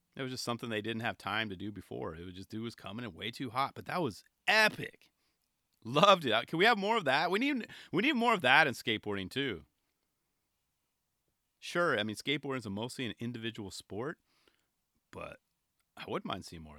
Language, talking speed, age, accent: English, 205 wpm, 30-49, American